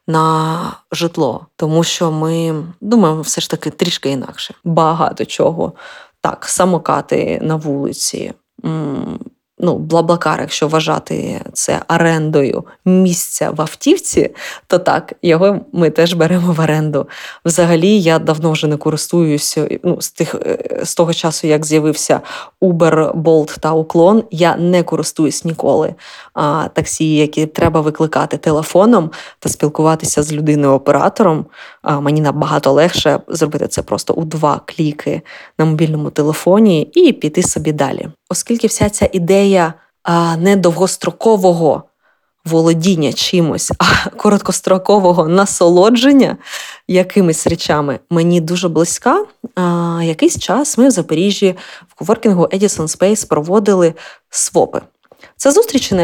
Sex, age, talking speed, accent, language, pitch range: female, 20-39, 125 wpm, native, Ukrainian, 155-195 Hz